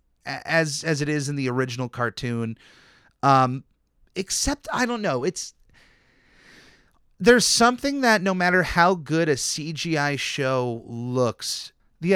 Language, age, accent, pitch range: English, 30-49, American, 135-190 Hz